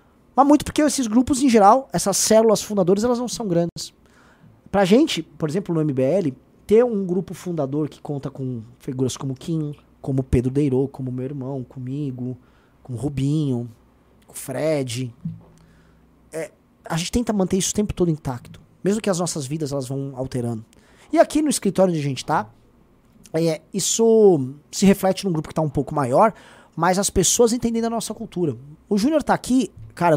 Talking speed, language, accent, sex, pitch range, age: 185 wpm, Portuguese, Brazilian, male, 130-205 Hz, 20-39